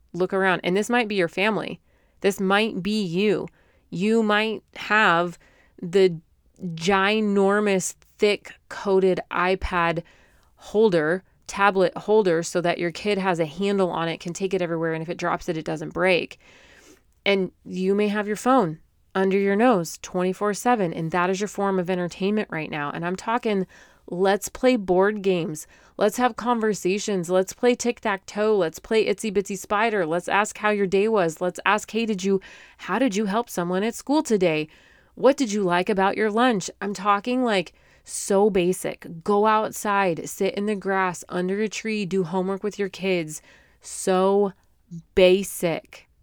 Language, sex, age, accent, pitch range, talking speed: English, female, 30-49, American, 180-210 Hz, 165 wpm